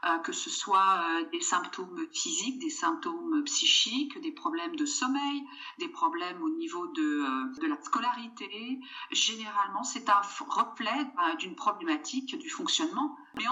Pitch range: 230-295 Hz